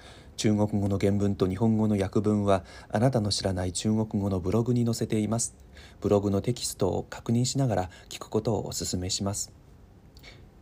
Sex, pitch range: male, 90-110 Hz